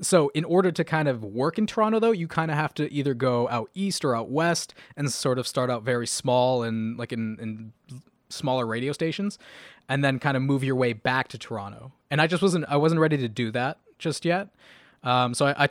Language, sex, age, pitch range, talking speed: English, male, 20-39, 120-150 Hz, 235 wpm